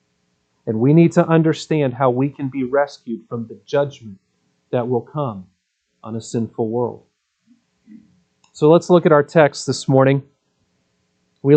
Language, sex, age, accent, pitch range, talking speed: English, male, 40-59, American, 120-165 Hz, 150 wpm